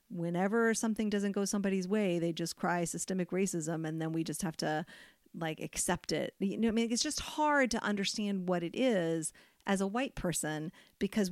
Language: English